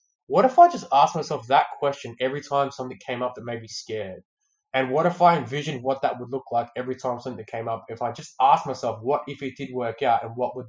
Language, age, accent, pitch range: English, 20-39, Australian, 120-155 Hz